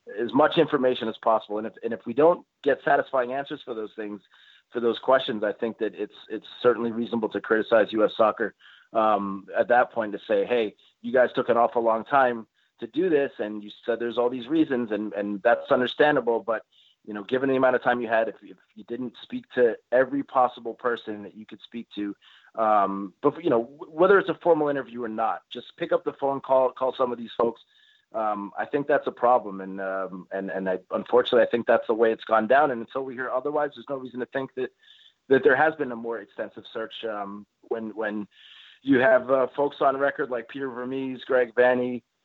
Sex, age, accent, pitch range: male, 30-49, American, 115-140 Hz